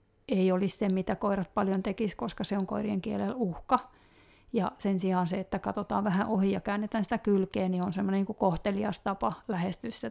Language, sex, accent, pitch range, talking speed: Finnish, female, native, 175-205 Hz, 195 wpm